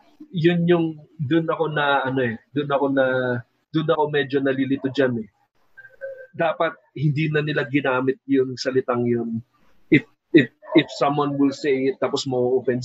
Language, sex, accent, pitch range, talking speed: Filipino, male, native, 130-150 Hz, 155 wpm